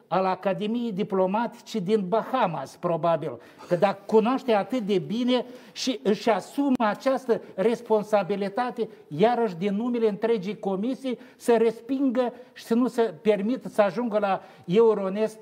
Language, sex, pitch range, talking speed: Romanian, male, 175-220 Hz, 130 wpm